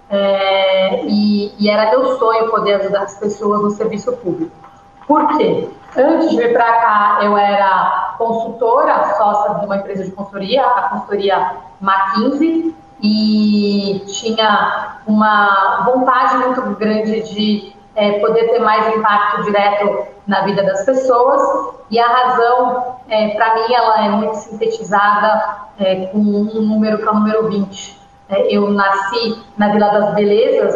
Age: 30-49